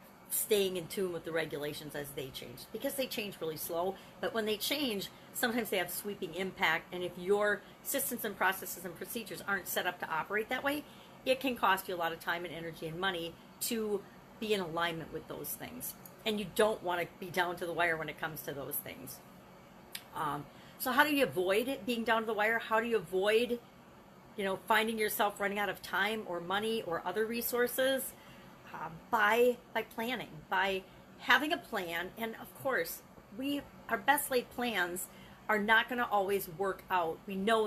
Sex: female